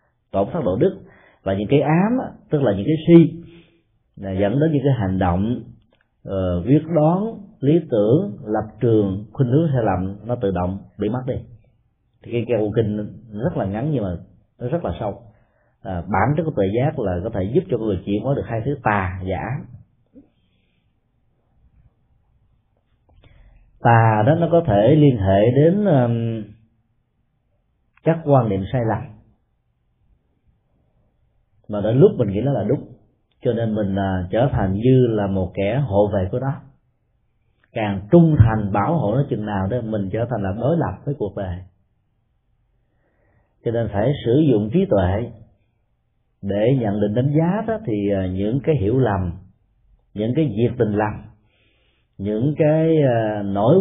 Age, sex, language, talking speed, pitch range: 30-49, male, Vietnamese, 165 wpm, 100-135 Hz